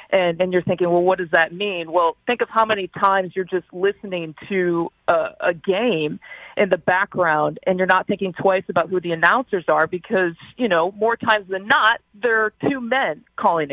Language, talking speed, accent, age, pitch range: English, 205 wpm, American, 40-59, 180-215 Hz